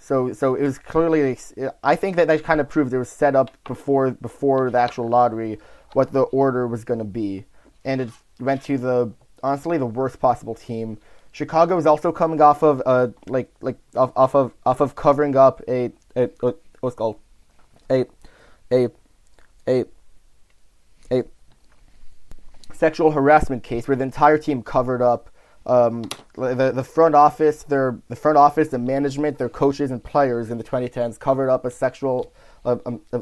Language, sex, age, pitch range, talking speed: English, male, 20-39, 120-145 Hz, 175 wpm